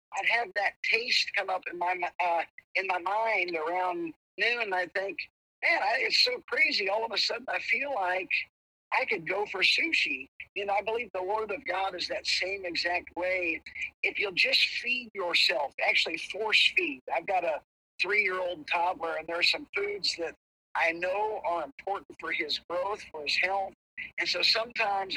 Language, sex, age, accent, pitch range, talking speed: English, male, 50-69, American, 180-240 Hz, 190 wpm